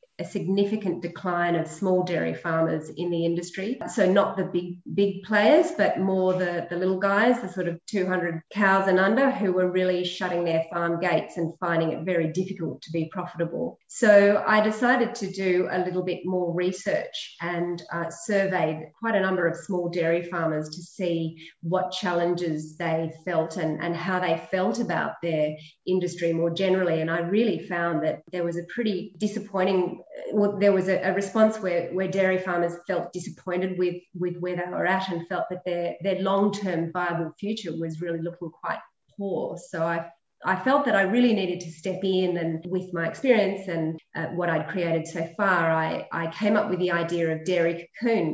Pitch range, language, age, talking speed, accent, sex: 170-190 Hz, English, 30-49, 190 wpm, Australian, female